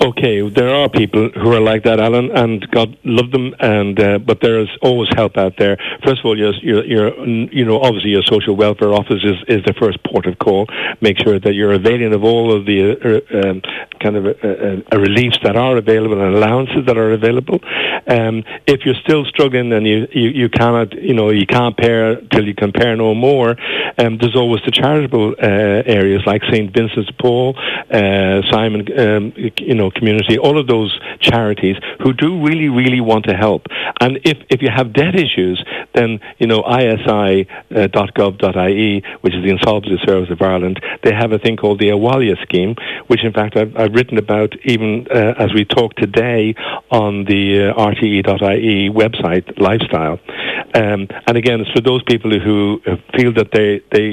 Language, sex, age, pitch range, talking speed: English, male, 60-79, 105-120 Hz, 195 wpm